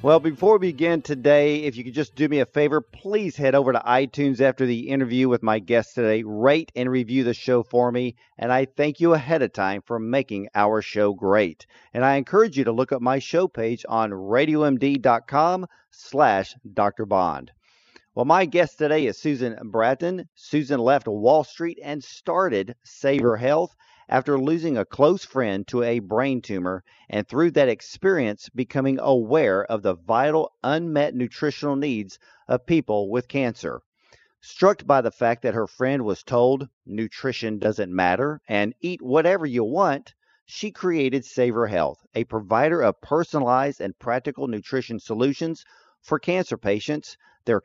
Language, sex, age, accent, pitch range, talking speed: English, male, 40-59, American, 115-150 Hz, 165 wpm